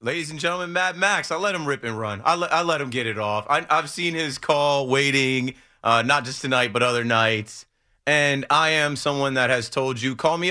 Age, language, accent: 30-49, English, American